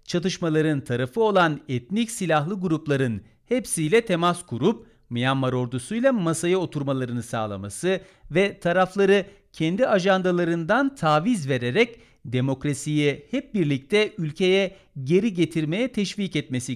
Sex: male